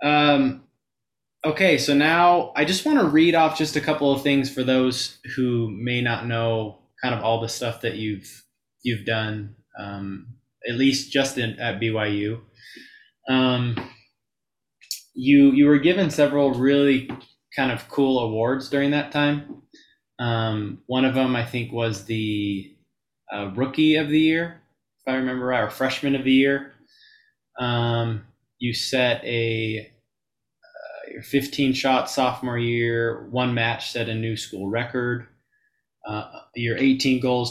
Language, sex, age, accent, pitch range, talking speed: English, male, 20-39, American, 110-135 Hz, 145 wpm